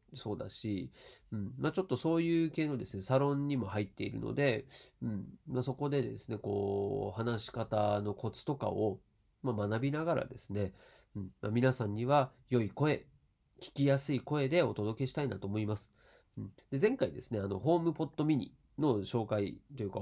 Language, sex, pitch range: Japanese, male, 105-135 Hz